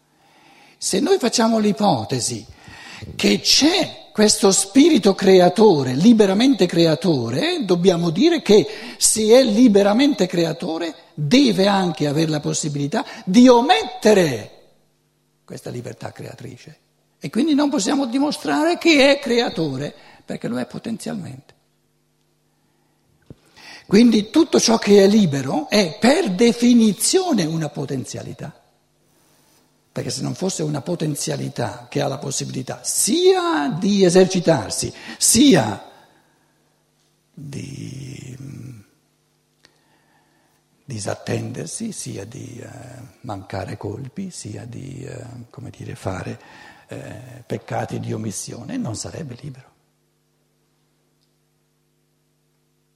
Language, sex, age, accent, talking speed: Italian, male, 60-79, native, 90 wpm